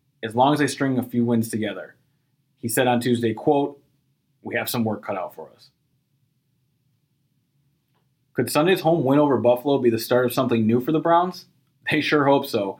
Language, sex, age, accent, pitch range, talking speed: English, male, 20-39, American, 115-140 Hz, 190 wpm